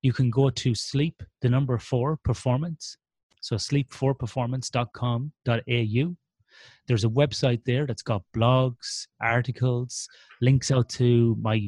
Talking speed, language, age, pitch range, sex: 120 wpm, English, 30-49, 115-140 Hz, male